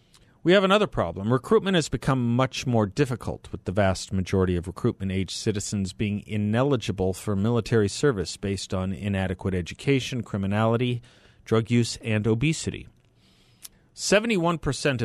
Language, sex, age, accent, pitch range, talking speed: English, male, 40-59, American, 100-125 Hz, 130 wpm